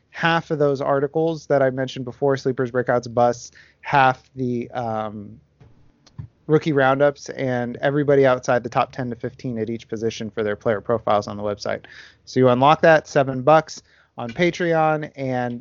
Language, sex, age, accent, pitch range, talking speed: English, male, 30-49, American, 125-155 Hz, 165 wpm